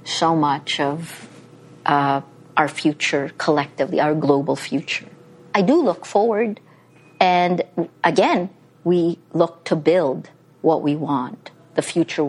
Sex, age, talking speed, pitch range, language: female, 50-69, 120 wpm, 160-200 Hz, English